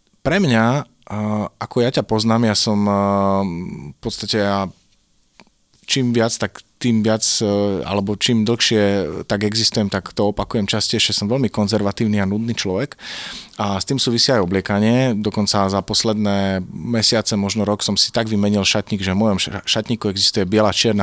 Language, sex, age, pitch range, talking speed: Slovak, male, 30-49, 100-115 Hz, 155 wpm